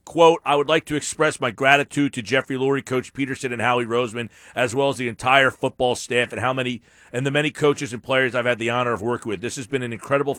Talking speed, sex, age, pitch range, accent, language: 245 wpm, male, 40-59, 120-150 Hz, American, English